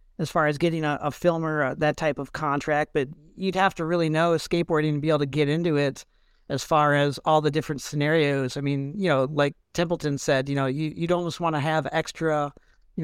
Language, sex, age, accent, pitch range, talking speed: English, male, 50-69, American, 140-165 Hz, 225 wpm